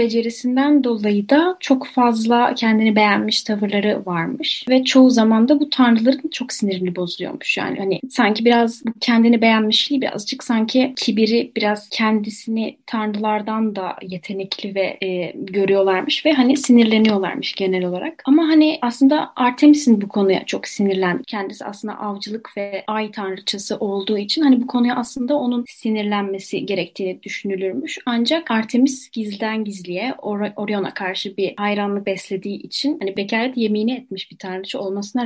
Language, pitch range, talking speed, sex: Turkish, 195-250 Hz, 140 wpm, female